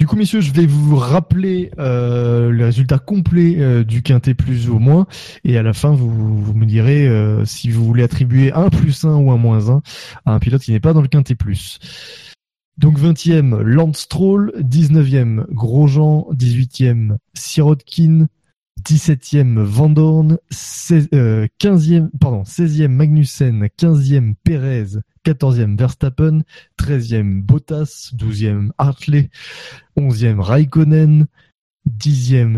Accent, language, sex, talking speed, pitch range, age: French, French, male, 135 wpm, 115-155 Hz, 20-39